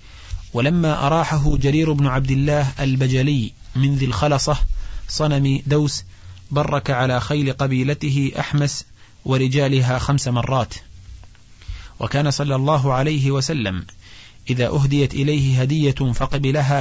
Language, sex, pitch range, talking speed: Arabic, male, 115-140 Hz, 105 wpm